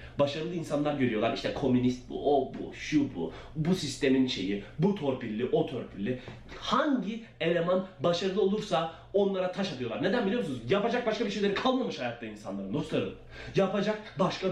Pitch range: 175-260 Hz